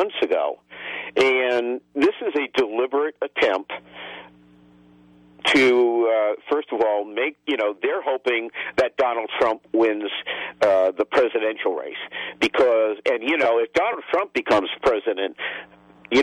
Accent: American